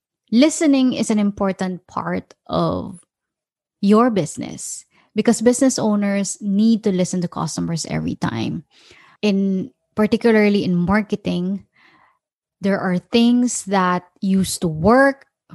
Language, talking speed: English, 110 wpm